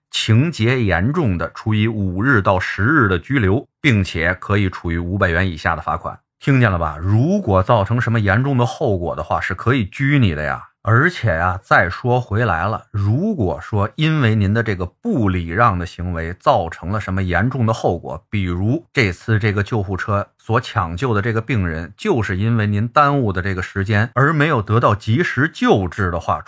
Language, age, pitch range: Chinese, 30-49, 90-120 Hz